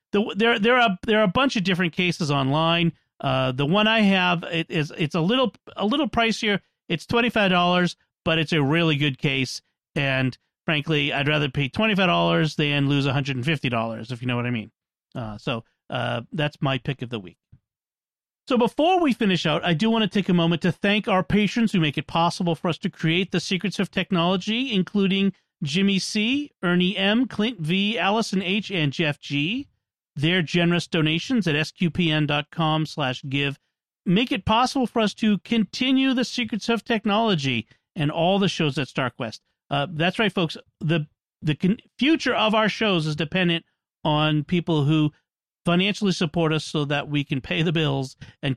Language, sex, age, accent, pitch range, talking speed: English, male, 40-59, American, 145-200 Hz, 195 wpm